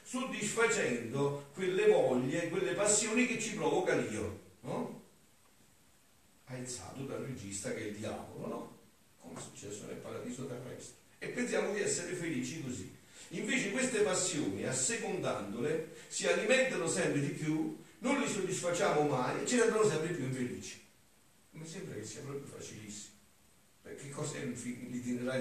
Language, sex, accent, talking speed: Italian, male, native, 135 wpm